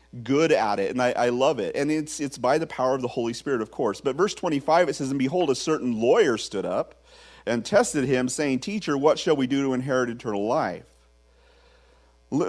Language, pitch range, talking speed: English, 100-150 Hz, 220 wpm